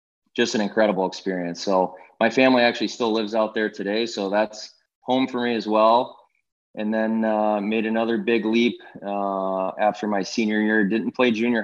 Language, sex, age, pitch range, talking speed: English, male, 20-39, 100-110 Hz, 180 wpm